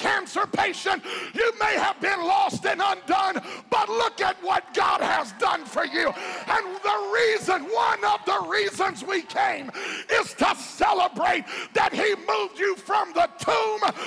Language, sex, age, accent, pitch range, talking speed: English, male, 50-69, American, 295-385 Hz, 160 wpm